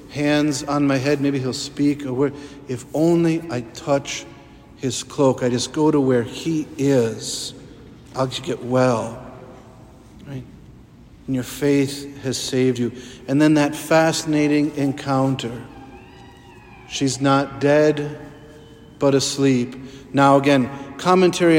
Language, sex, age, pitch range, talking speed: English, male, 50-69, 130-145 Hz, 115 wpm